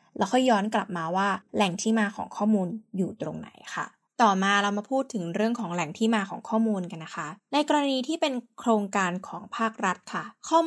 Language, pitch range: Thai, 195-255 Hz